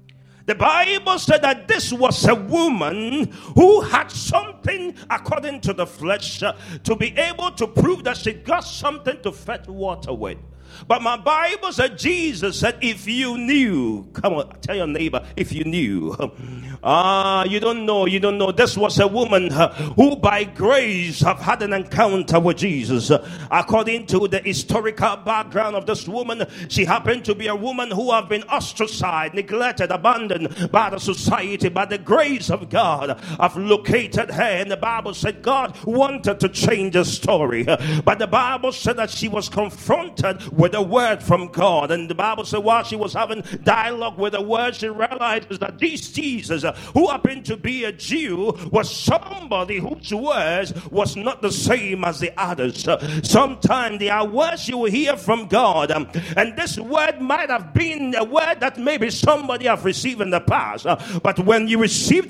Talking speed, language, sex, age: 175 wpm, English, male, 40-59